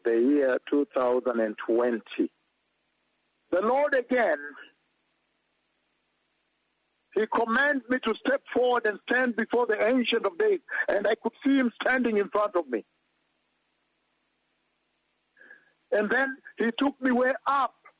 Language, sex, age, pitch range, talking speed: English, male, 60-79, 220-275 Hz, 120 wpm